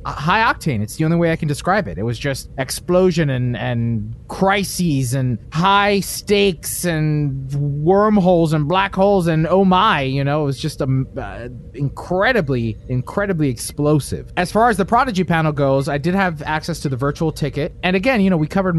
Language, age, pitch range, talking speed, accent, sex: English, 30-49, 125-170 Hz, 185 wpm, American, male